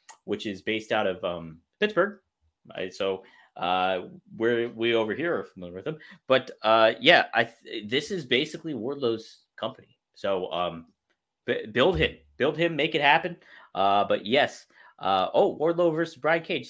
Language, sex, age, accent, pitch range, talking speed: English, male, 20-39, American, 110-160 Hz, 170 wpm